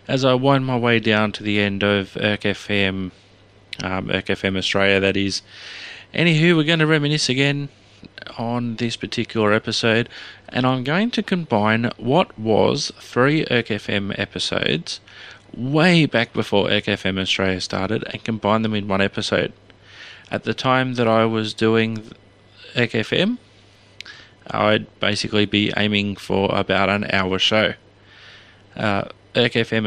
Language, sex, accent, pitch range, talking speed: English, male, Australian, 100-120 Hz, 145 wpm